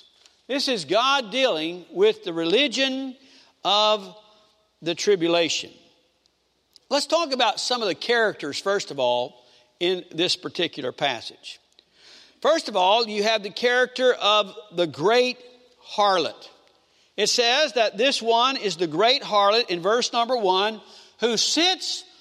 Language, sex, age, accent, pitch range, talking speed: English, male, 60-79, American, 200-270 Hz, 135 wpm